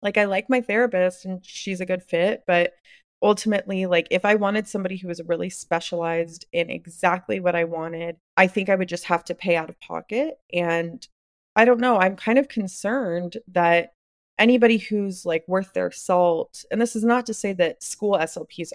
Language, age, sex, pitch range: English, 20-39, female, 170-205 Hz